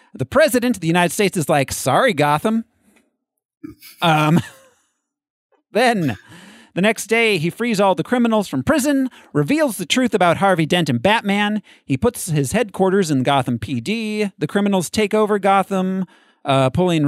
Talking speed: 155 wpm